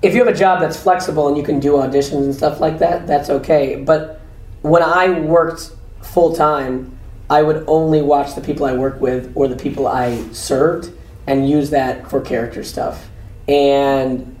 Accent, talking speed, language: American, 185 wpm, English